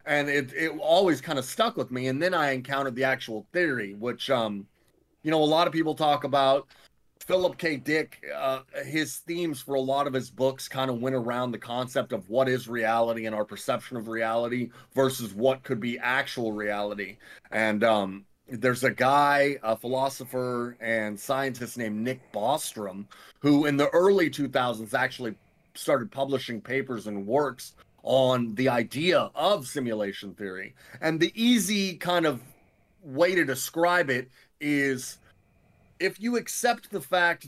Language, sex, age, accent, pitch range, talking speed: English, male, 30-49, American, 120-145 Hz, 165 wpm